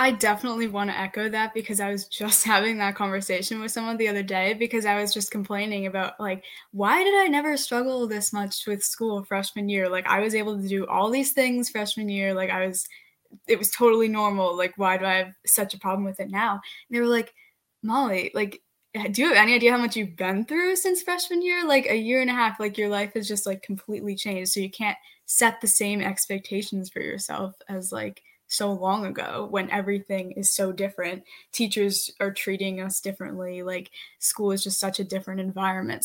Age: 10-29